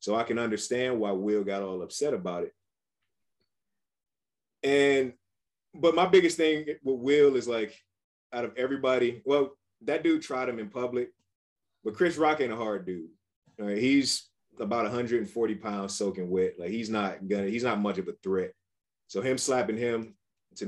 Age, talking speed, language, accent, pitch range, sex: 30-49, 170 wpm, English, American, 95-120 Hz, male